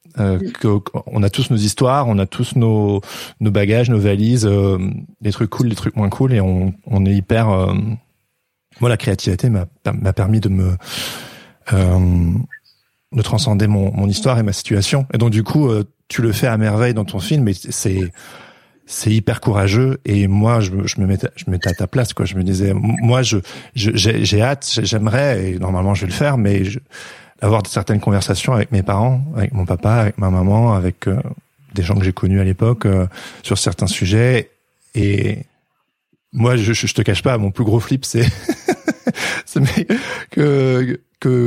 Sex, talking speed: male, 195 wpm